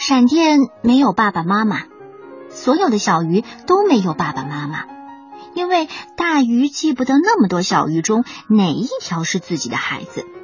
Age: 50-69